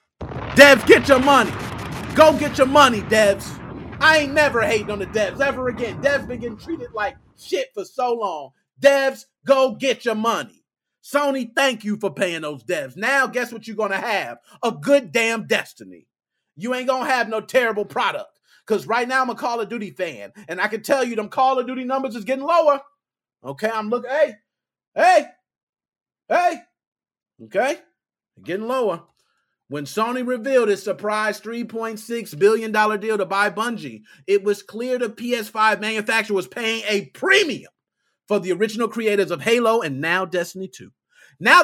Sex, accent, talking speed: male, American, 175 wpm